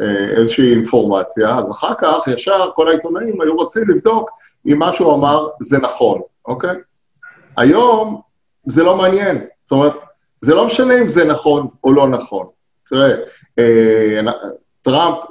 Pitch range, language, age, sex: 130-190 Hz, Hebrew, 50-69, male